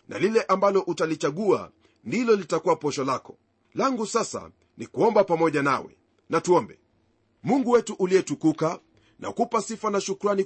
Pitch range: 165-205 Hz